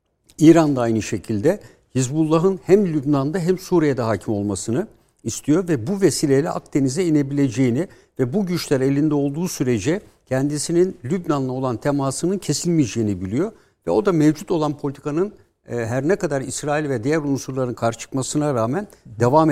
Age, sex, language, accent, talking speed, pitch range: 60-79, male, Turkish, native, 140 wpm, 120-165 Hz